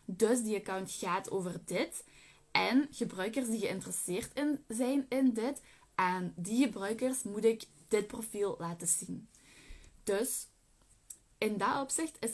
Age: 10-29